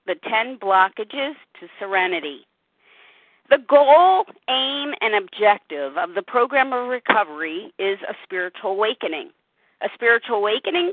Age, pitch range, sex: 50-69, 190-260 Hz, female